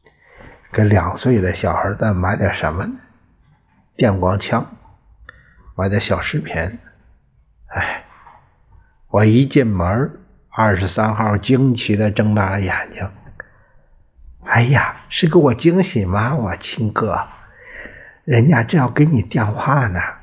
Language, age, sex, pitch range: Chinese, 60-79, male, 90-115 Hz